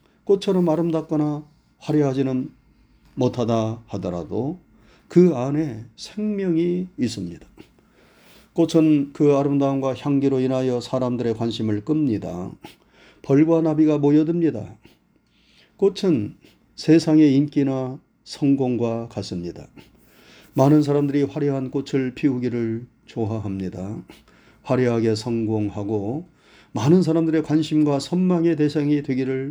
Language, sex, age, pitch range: Korean, male, 40-59, 120-160 Hz